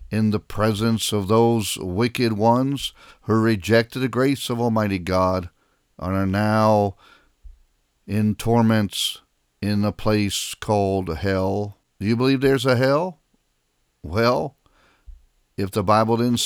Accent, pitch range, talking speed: American, 95-120 Hz, 130 wpm